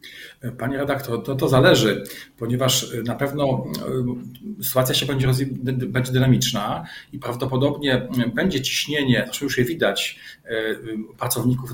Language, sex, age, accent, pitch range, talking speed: Polish, male, 40-59, native, 120-135 Hz, 110 wpm